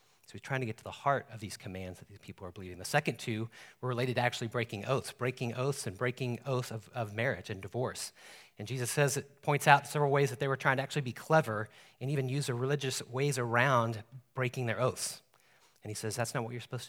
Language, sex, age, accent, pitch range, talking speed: English, male, 40-59, American, 110-135 Hz, 245 wpm